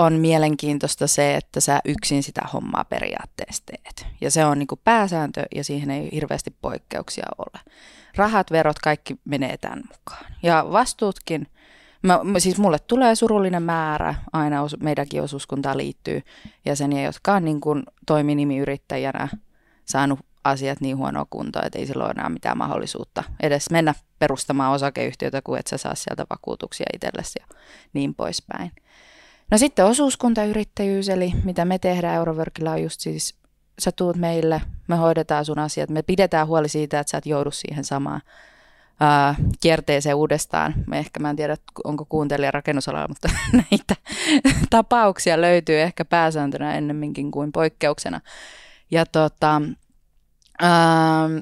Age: 20-39